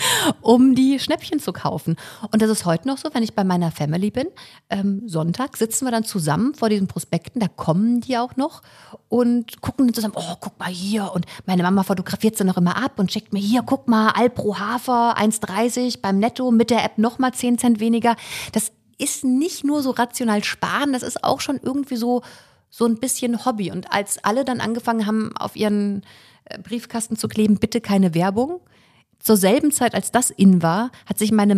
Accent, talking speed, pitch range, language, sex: German, 205 wpm, 200-250 Hz, German, female